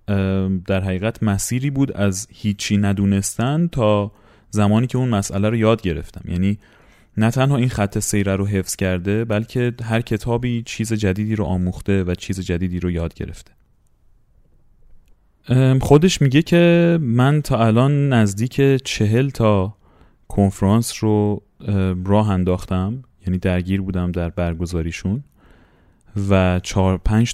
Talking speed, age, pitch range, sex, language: 125 wpm, 30-49, 95-125 Hz, male, Persian